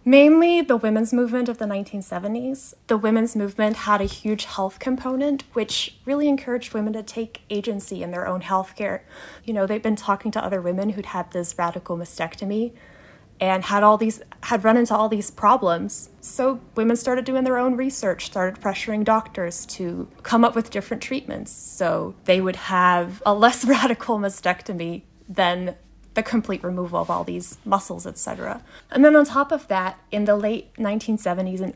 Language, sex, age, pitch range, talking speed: English, female, 20-39, 190-235 Hz, 180 wpm